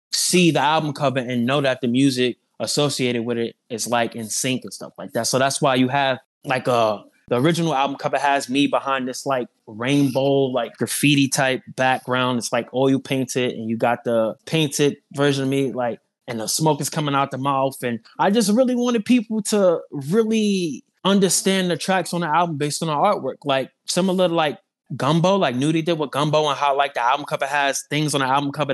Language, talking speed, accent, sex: English, 215 wpm, American, male